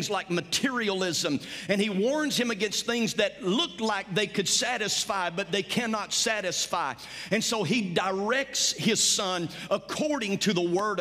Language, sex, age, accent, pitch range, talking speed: English, male, 50-69, American, 190-245 Hz, 155 wpm